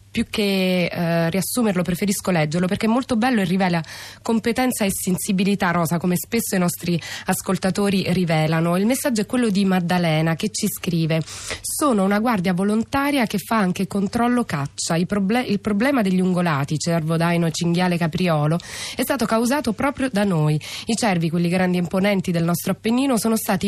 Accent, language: native, Italian